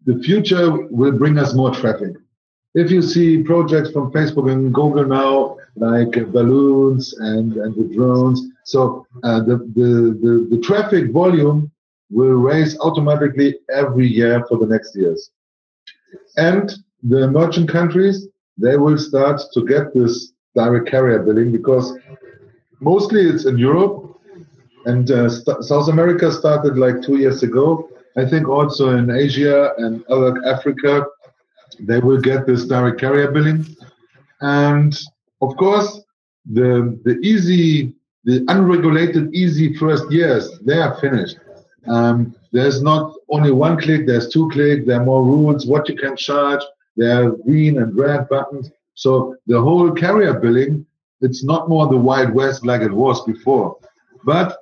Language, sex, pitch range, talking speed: English, male, 125-155 Hz, 145 wpm